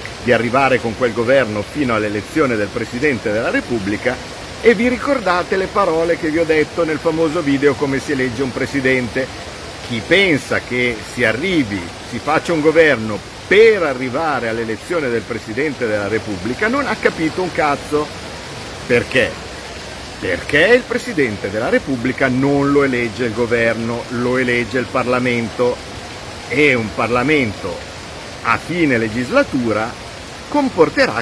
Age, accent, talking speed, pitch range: 50-69, native, 135 wpm, 115-165 Hz